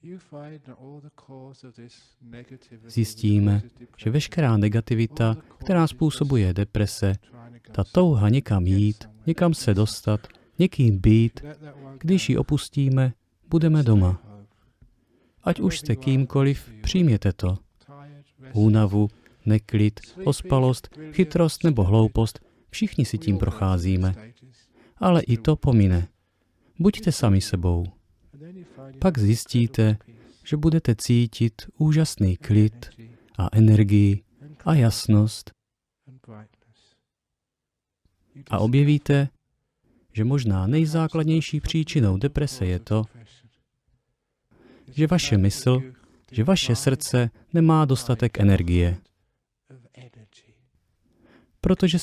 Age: 40-59